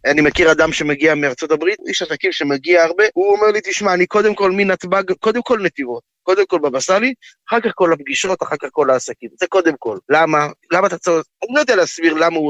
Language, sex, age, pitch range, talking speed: Hebrew, male, 20-39, 150-195 Hz, 220 wpm